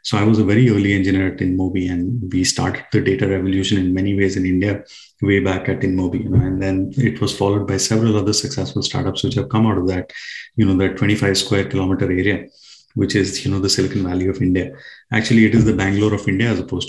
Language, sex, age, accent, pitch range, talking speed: English, male, 30-49, Indian, 95-130 Hz, 240 wpm